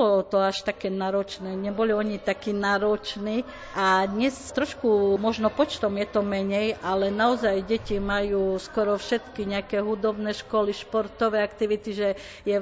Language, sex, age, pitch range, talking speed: Slovak, female, 50-69, 185-210 Hz, 145 wpm